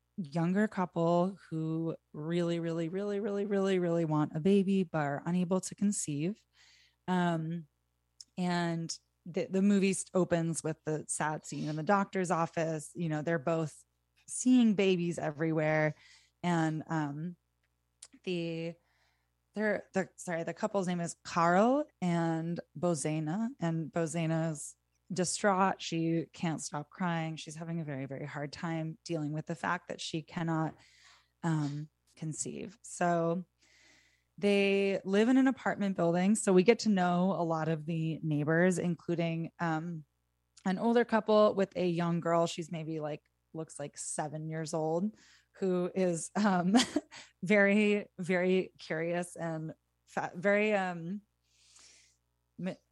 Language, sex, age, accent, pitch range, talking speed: English, female, 20-39, American, 155-185 Hz, 135 wpm